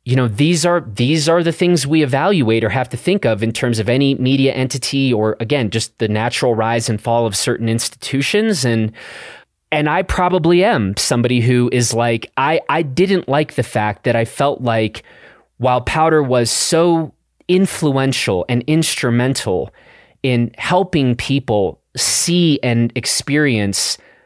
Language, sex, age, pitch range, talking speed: English, male, 30-49, 115-160 Hz, 160 wpm